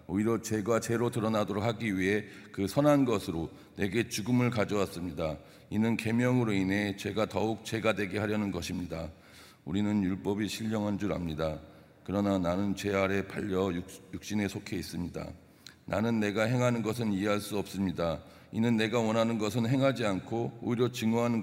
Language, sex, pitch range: Korean, male, 95-115 Hz